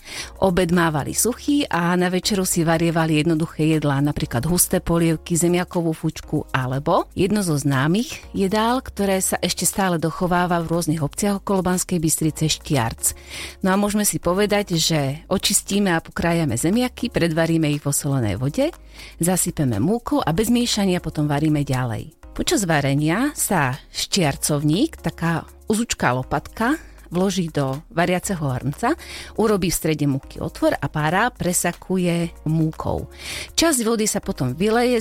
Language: Slovak